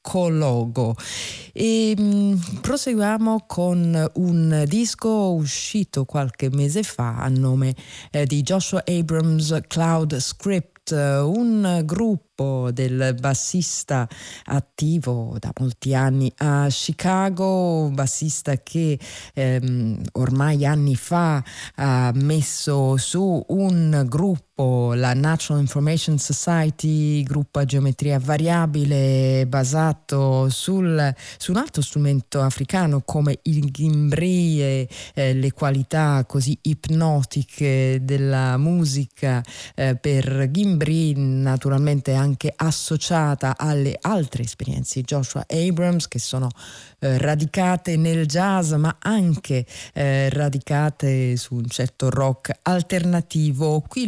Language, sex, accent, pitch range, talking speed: Italian, female, native, 135-165 Hz, 105 wpm